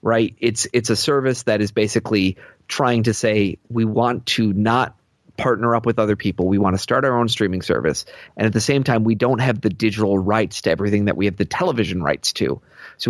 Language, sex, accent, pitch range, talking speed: English, male, American, 105-120 Hz, 225 wpm